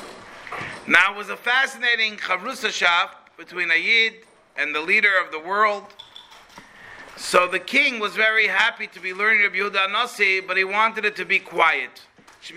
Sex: male